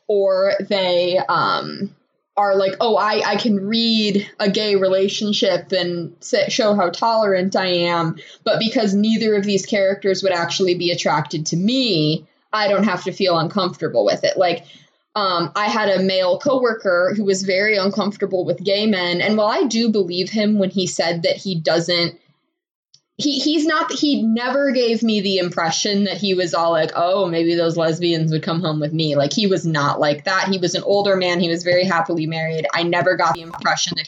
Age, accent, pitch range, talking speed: 20-39, American, 175-220 Hz, 195 wpm